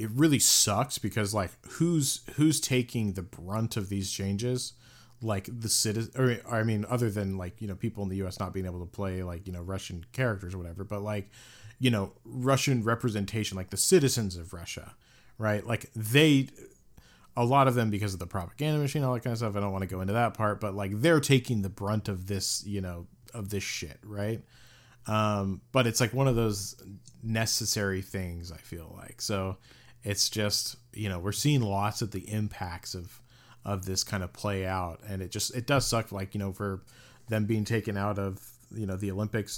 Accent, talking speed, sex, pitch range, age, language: American, 210 wpm, male, 95-120 Hz, 30-49, English